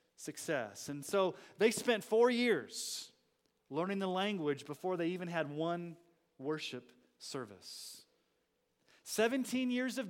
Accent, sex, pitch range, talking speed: American, male, 135-195 Hz, 120 wpm